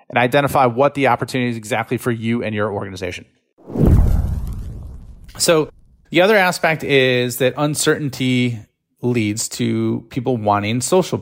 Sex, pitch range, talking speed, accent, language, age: male, 105-135 Hz, 130 wpm, American, English, 30-49